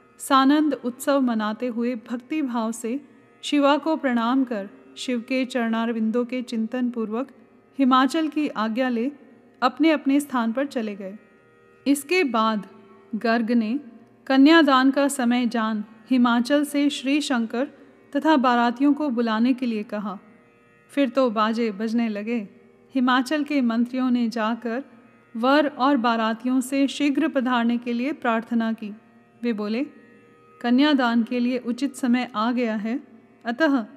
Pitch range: 230-270 Hz